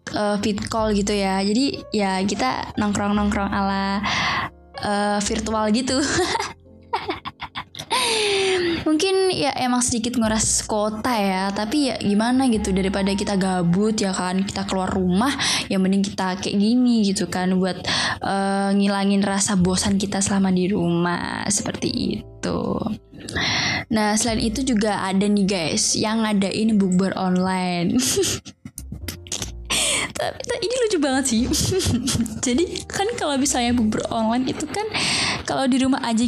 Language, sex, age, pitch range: Indonesian, female, 10-29, 195-270 Hz